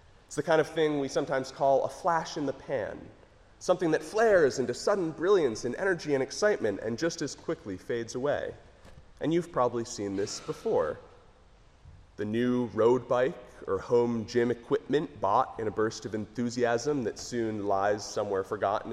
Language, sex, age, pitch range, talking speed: English, male, 30-49, 105-160 Hz, 170 wpm